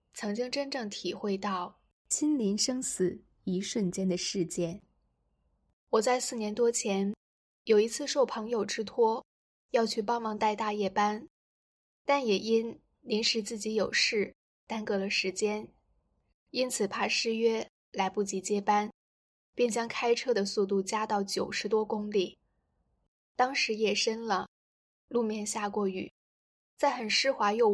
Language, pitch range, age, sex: Chinese, 195-235 Hz, 10-29, female